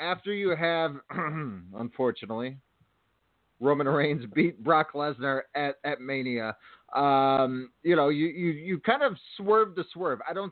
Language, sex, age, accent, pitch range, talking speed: English, male, 30-49, American, 140-180 Hz, 145 wpm